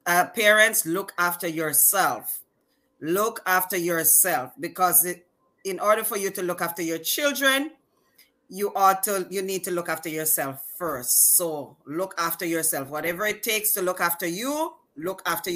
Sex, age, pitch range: female, 30-49, 170-225 Hz